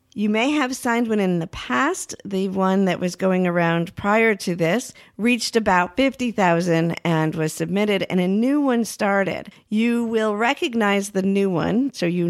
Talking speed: 175 wpm